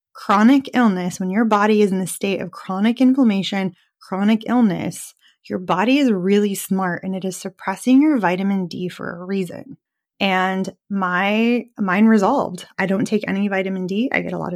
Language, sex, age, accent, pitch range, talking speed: English, female, 20-39, American, 185-225 Hz, 175 wpm